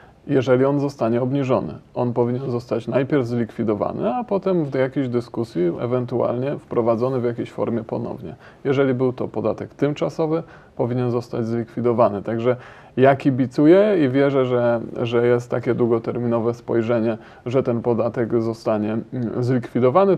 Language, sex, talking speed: Polish, male, 130 wpm